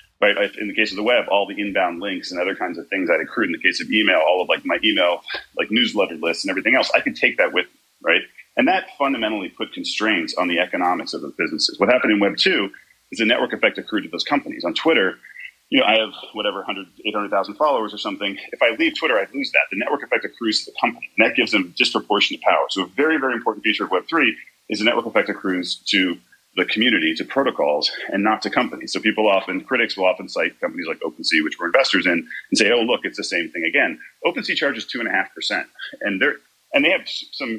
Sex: male